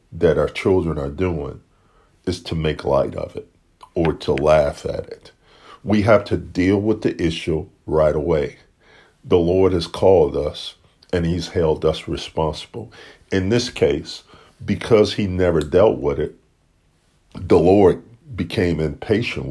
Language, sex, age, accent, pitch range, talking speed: English, male, 50-69, American, 80-95 Hz, 150 wpm